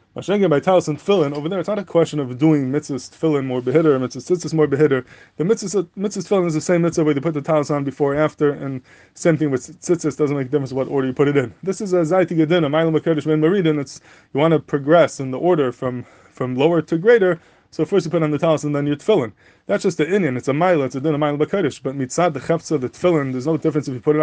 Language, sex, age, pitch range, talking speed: English, male, 20-39, 140-170 Hz, 270 wpm